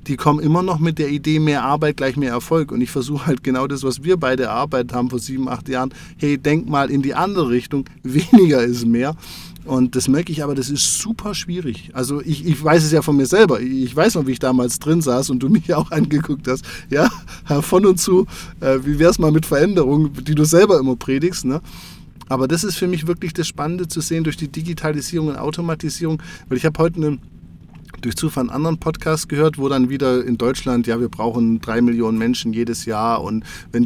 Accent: German